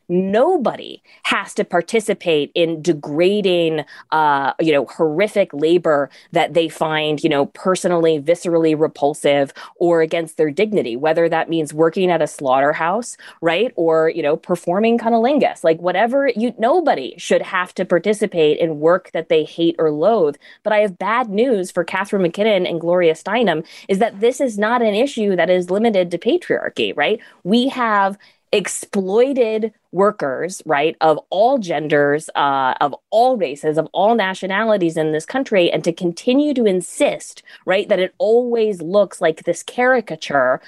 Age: 20-39